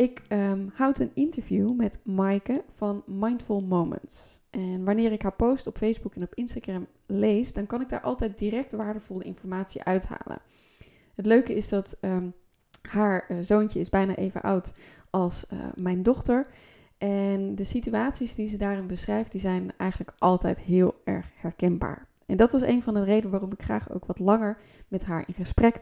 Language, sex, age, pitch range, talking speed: Dutch, female, 20-39, 190-230 Hz, 170 wpm